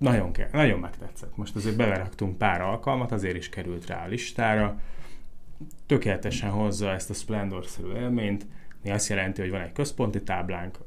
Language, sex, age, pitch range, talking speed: Hungarian, male, 30-49, 95-110 Hz, 150 wpm